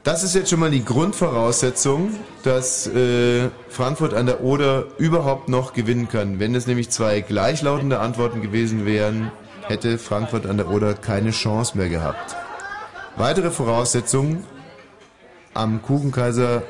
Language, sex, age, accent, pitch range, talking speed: German, male, 30-49, German, 100-125 Hz, 135 wpm